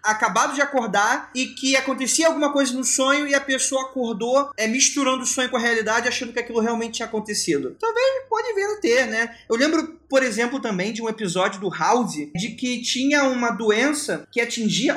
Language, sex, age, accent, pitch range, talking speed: Portuguese, male, 20-39, Brazilian, 210-265 Hz, 195 wpm